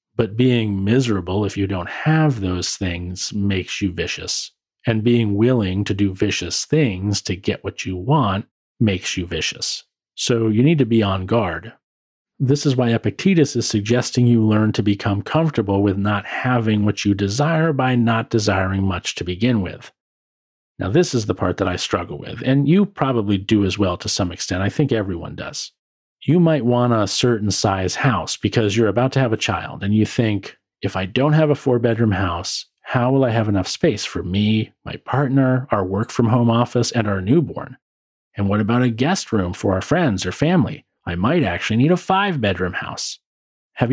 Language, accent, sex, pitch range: English, American, male, 100-125 Hz